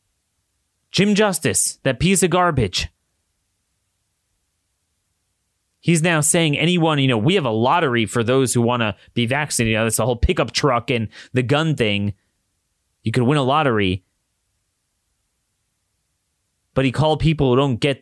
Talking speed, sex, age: 145 wpm, male, 30-49